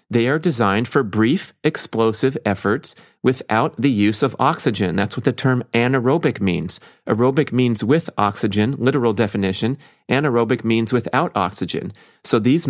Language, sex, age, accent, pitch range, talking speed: English, male, 30-49, American, 100-120 Hz, 140 wpm